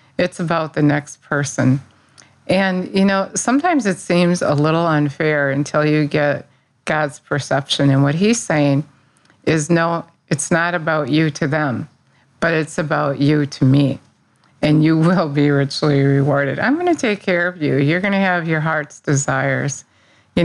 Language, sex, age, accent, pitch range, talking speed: English, female, 50-69, American, 140-160 Hz, 170 wpm